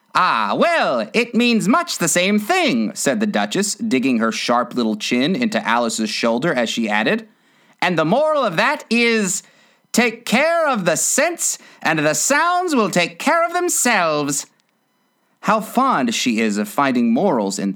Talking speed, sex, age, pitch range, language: 165 wpm, male, 30-49, 160-255 Hz, English